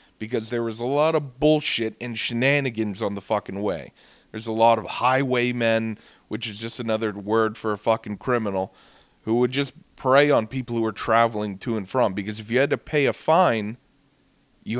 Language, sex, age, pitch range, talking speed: English, male, 30-49, 110-135 Hz, 195 wpm